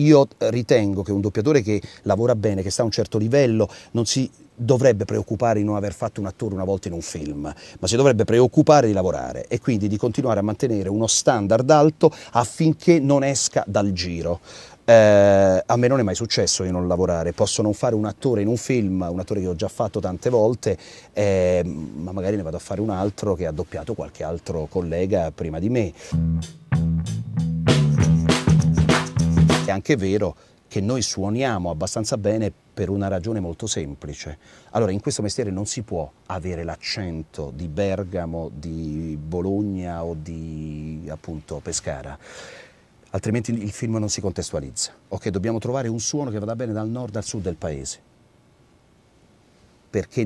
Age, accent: 30-49, native